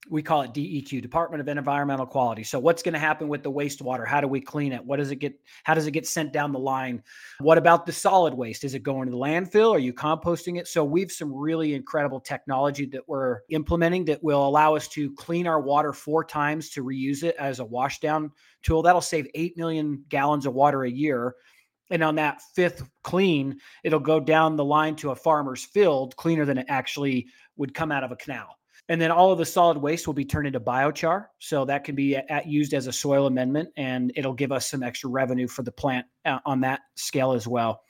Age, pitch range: 30-49, 135-160 Hz